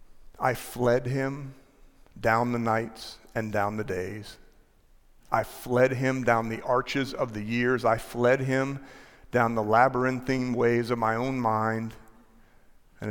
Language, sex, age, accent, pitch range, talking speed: English, male, 40-59, American, 105-120 Hz, 140 wpm